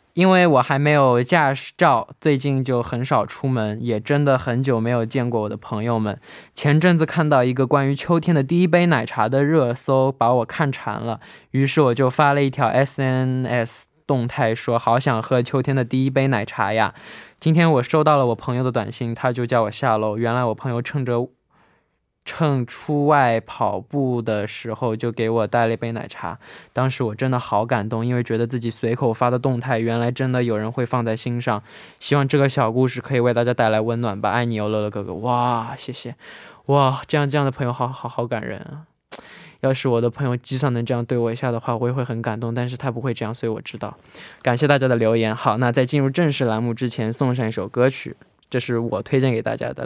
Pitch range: 115-135 Hz